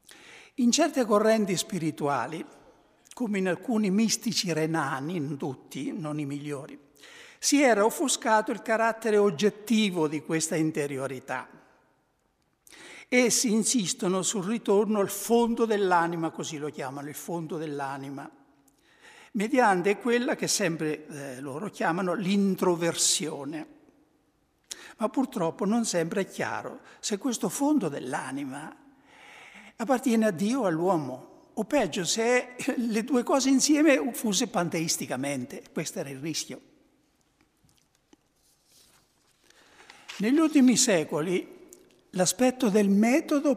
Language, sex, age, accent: Italian, male, 60-79, native